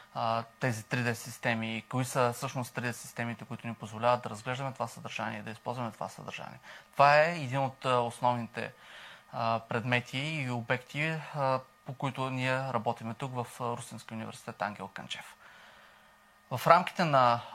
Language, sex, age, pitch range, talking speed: Bulgarian, male, 20-39, 115-140 Hz, 145 wpm